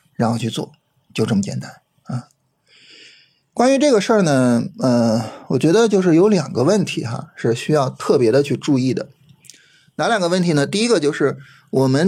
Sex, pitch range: male, 135-205 Hz